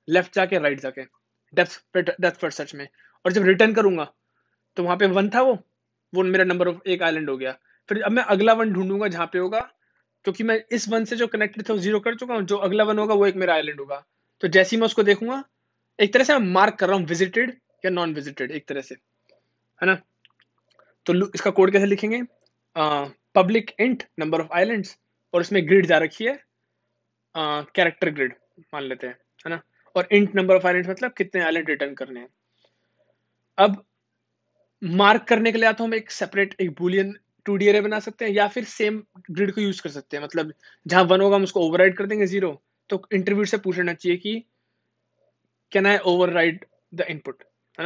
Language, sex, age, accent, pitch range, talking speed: Hindi, male, 20-39, native, 155-205 Hz, 165 wpm